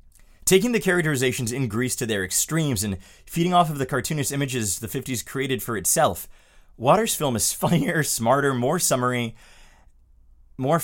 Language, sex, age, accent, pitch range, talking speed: English, male, 30-49, American, 95-140 Hz, 155 wpm